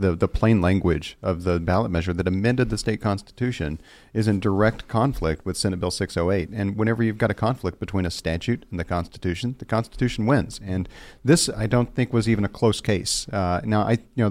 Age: 40-59